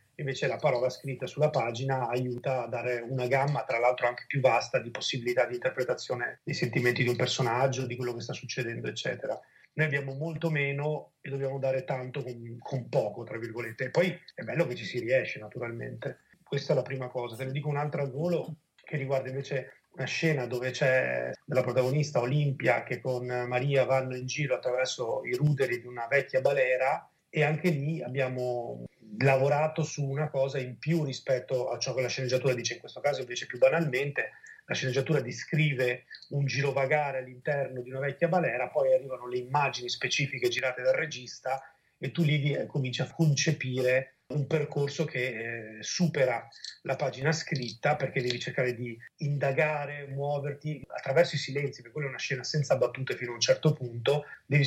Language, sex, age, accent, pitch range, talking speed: Italian, male, 30-49, native, 125-150 Hz, 180 wpm